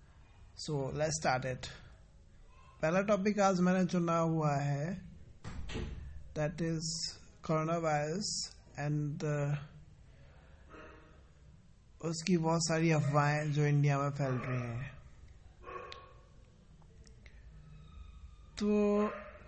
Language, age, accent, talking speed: Hindi, 20-39, native, 85 wpm